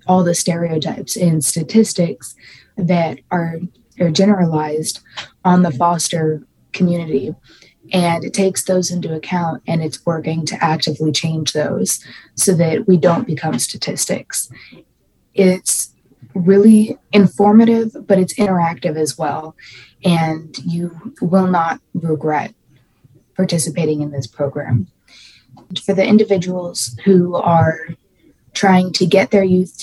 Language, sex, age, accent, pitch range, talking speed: English, female, 20-39, American, 160-190 Hz, 120 wpm